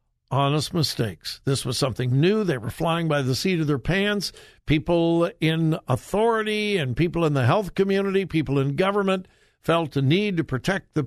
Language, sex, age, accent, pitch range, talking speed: English, male, 60-79, American, 135-200 Hz, 180 wpm